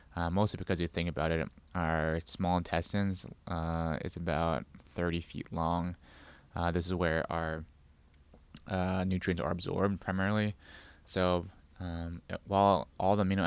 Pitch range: 80-95 Hz